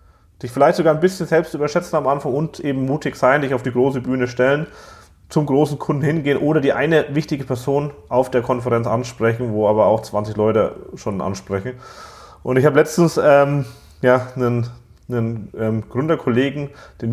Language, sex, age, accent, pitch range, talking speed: German, male, 30-49, German, 110-140 Hz, 175 wpm